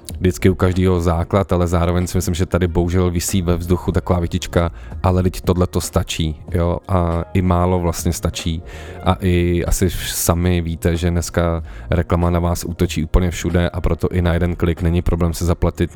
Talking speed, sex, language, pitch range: 185 wpm, male, Czech, 85-90 Hz